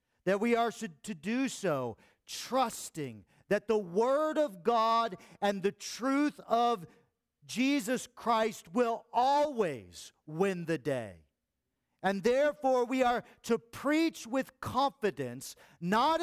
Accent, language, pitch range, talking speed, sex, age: American, English, 165-235 Hz, 120 wpm, male, 40-59